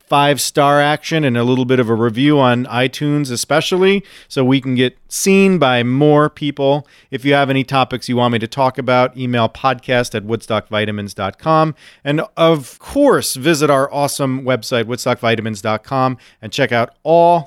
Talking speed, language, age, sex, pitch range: 160 wpm, English, 40-59, male, 115-155 Hz